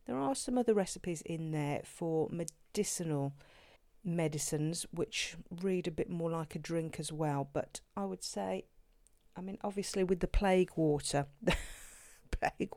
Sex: female